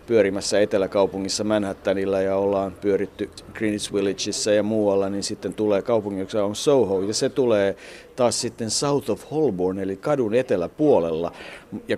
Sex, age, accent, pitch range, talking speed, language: male, 50-69, native, 100-120 Hz, 145 wpm, Finnish